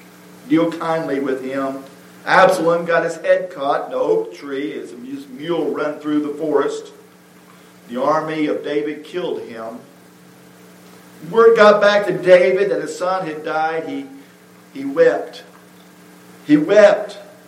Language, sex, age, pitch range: English, male, 50-69, 150-225 Hz